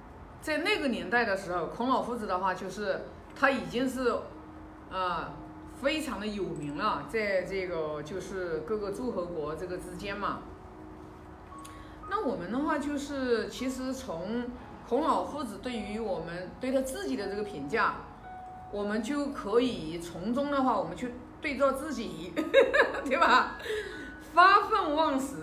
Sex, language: female, Chinese